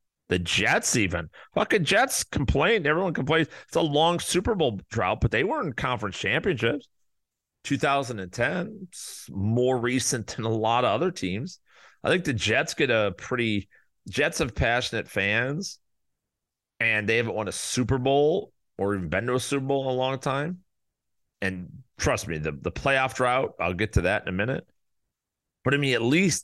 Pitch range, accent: 100-140 Hz, American